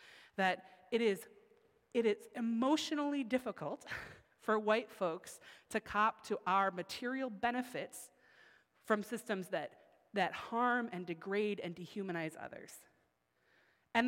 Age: 30-49